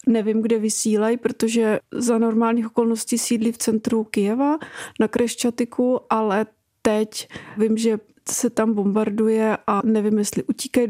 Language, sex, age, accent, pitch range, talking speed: Czech, female, 40-59, native, 220-240 Hz, 130 wpm